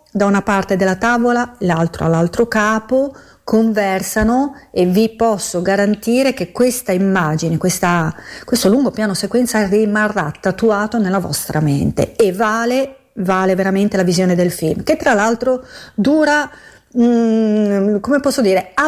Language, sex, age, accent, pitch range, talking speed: Italian, female, 40-59, native, 185-240 Hz, 135 wpm